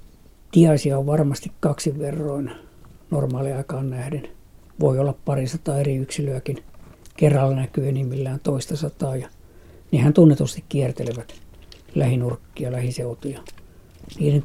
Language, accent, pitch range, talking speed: Finnish, native, 125-150 Hz, 110 wpm